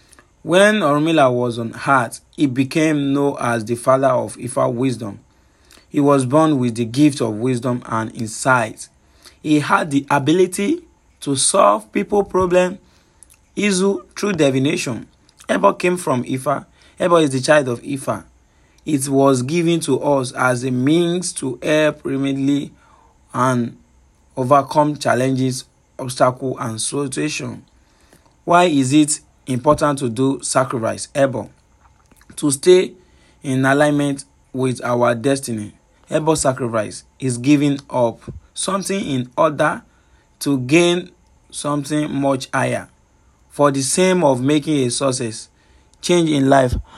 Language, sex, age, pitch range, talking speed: English, male, 30-49, 120-150 Hz, 125 wpm